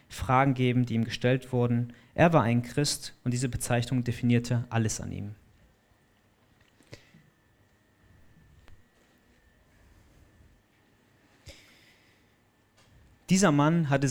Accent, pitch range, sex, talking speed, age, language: German, 110-130 Hz, male, 85 wpm, 30-49, German